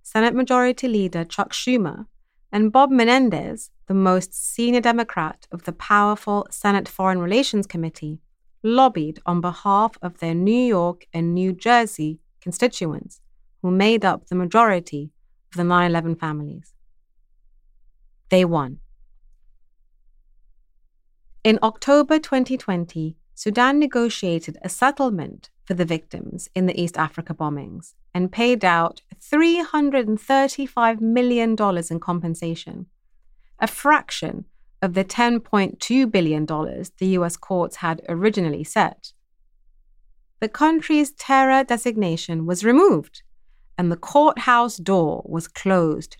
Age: 30-49